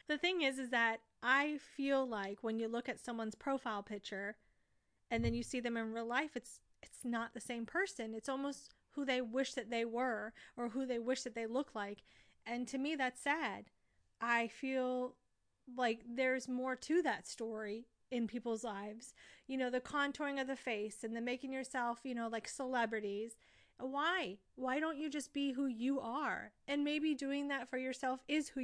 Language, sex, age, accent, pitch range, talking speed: English, female, 30-49, American, 230-275 Hz, 195 wpm